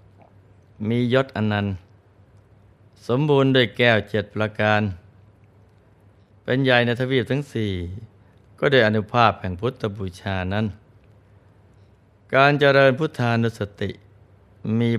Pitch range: 100-115 Hz